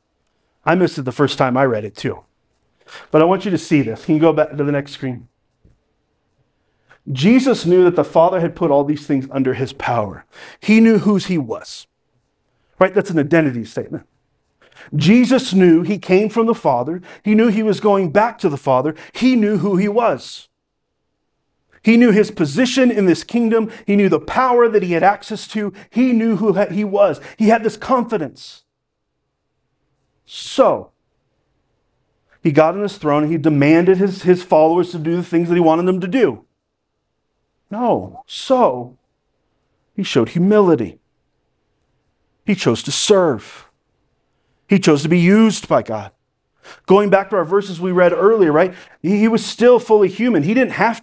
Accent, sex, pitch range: American, male, 155-215 Hz